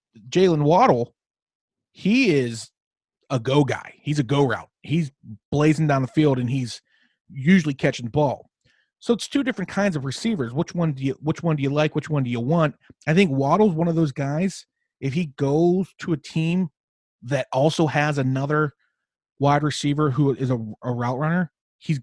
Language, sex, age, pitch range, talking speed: English, male, 30-49, 130-170 Hz, 190 wpm